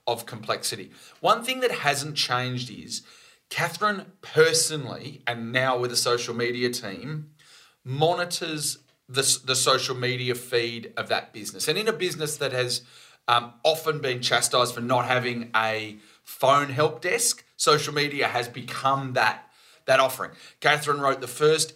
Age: 30-49